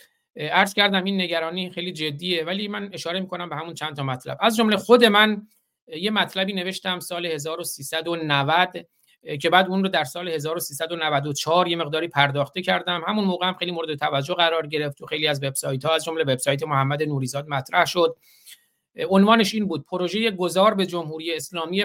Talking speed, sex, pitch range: 175 wpm, male, 155-185 Hz